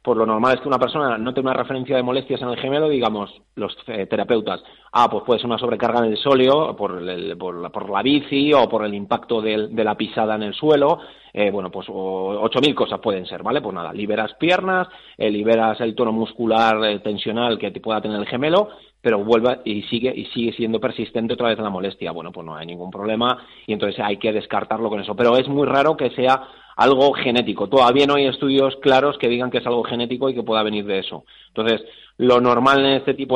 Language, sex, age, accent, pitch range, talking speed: Spanish, male, 30-49, Spanish, 110-130 Hz, 230 wpm